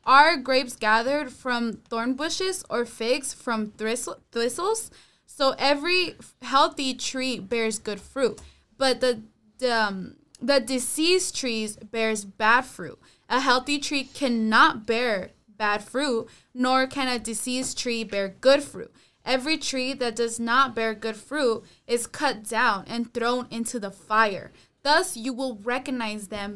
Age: 20-39